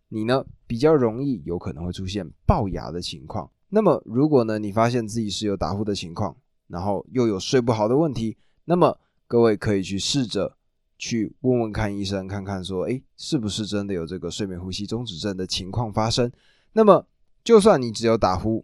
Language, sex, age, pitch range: Chinese, male, 20-39, 100-130 Hz